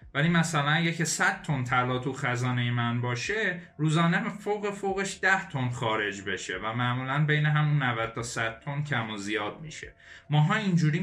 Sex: male